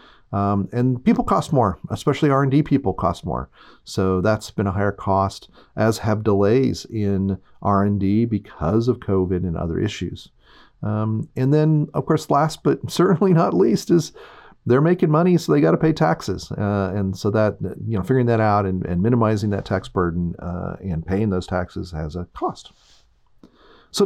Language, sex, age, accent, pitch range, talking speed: English, male, 40-59, American, 90-130 Hz, 175 wpm